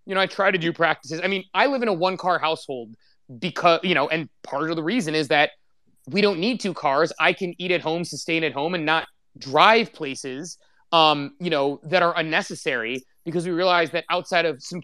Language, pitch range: English, 145-185 Hz